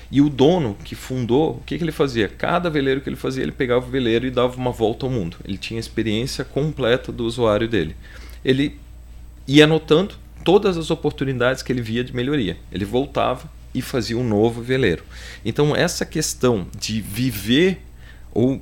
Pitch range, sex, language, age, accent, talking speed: 110-145 Hz, male, Portuguese, 40-59, Brazilian, 185 wpm